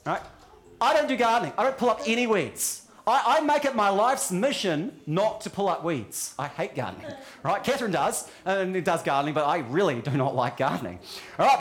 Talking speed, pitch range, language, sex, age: 205 wpm, 180-250 Hz, English, male, 30-49